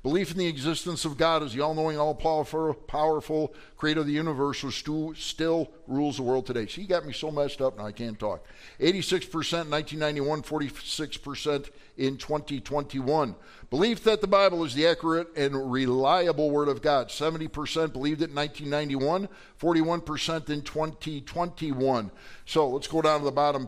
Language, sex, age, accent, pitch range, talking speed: English, male, 50-69, American, 140-170 Hz, 155 wpm